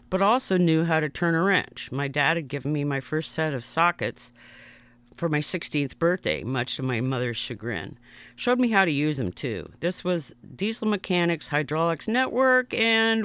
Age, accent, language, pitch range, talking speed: 50-69, American, English, 130-175 Hz, 185 wpm